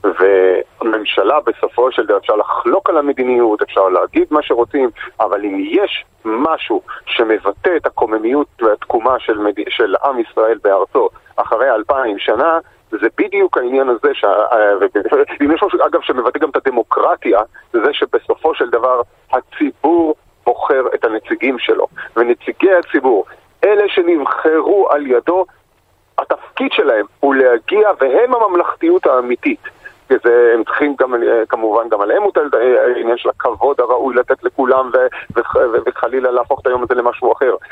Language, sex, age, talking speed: Hebrew, male, 40-59, 140 wpm